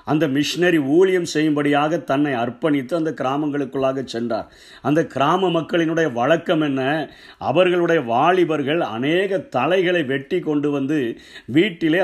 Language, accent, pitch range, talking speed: Tamil, native, 140-165 Hz, 110 wpm